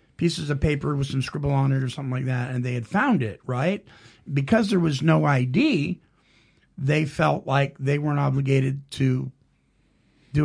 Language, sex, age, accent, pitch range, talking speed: English, male, 50-69, American, 135-180 Hz, 185 wpm